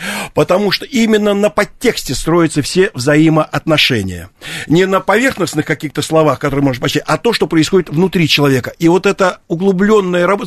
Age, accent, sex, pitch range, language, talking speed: 50-69, native, male, 150-195 Hz, Russian, 155 wpm